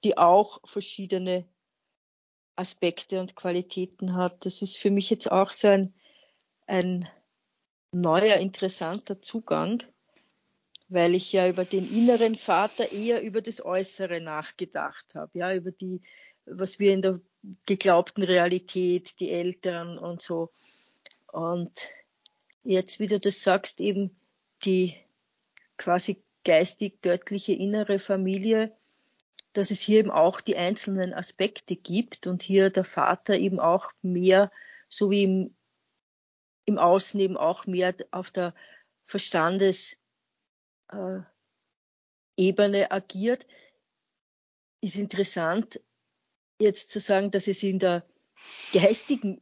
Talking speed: 115 wpm